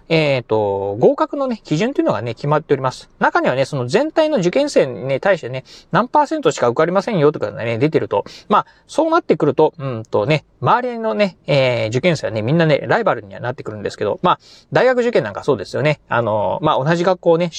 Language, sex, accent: Japanese, male, native